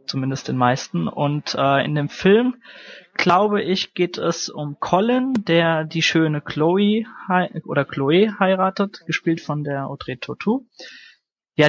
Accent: German